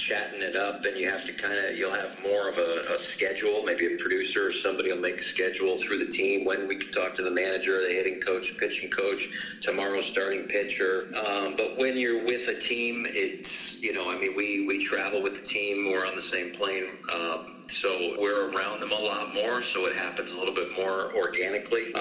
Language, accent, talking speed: English, American, 225 wpm